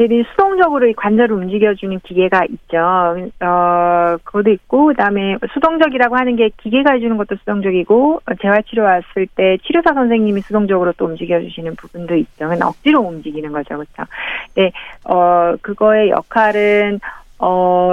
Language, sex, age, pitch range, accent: Korean, female, 40-59, 170-220 Hz, native